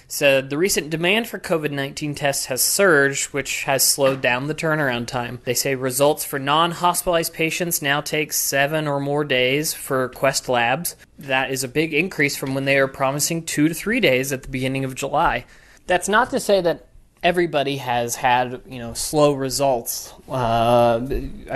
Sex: male